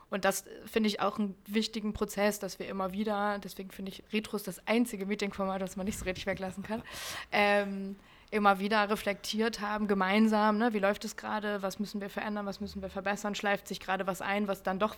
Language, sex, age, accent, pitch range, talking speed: English, female, 20-39, German, 195-215 Hz, 210 wpm